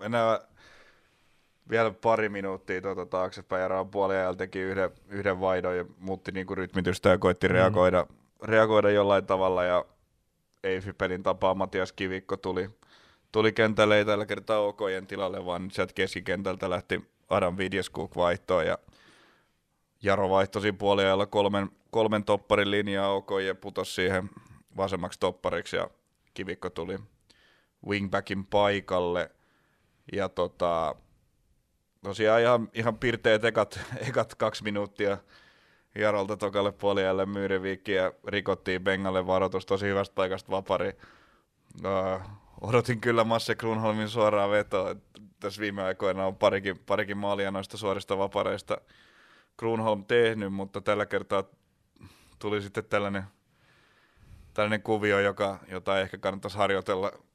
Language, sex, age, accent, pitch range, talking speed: Finnish, male, 20-39, native, 95-105 Hz, 120 wpm